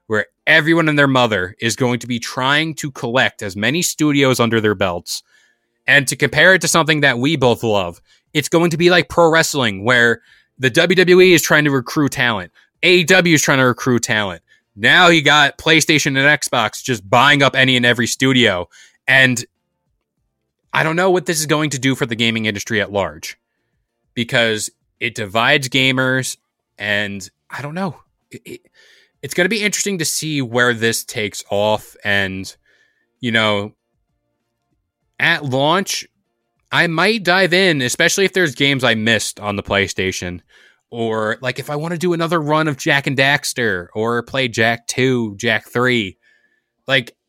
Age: 20-39